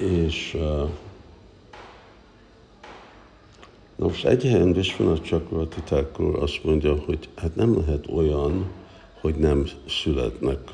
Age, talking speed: 60-79, 100 wpm